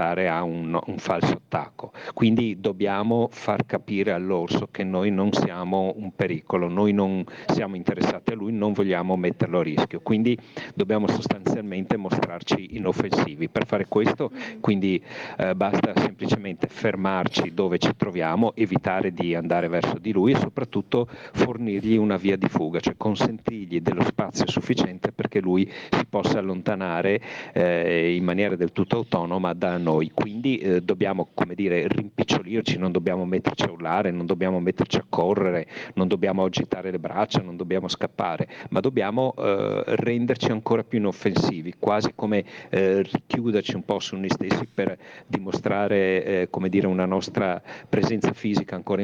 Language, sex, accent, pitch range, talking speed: Italian, male, native, 90-105 Hz, 150 wpm